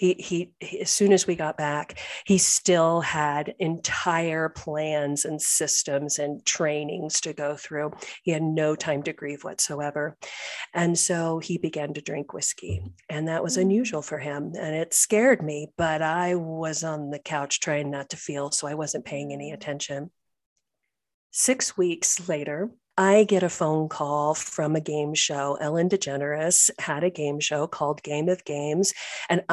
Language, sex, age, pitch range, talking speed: English, female, 40-59, 150-180 Hz, 170 wpm